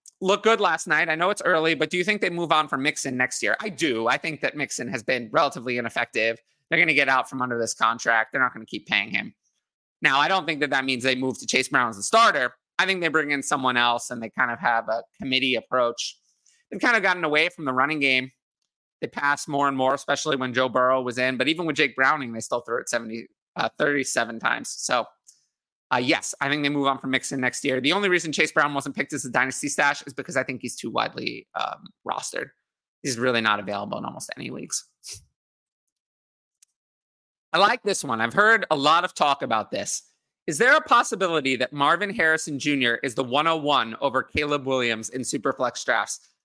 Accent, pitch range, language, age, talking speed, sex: American, 130-155 Hz, English, 30-49, 230 wpm, male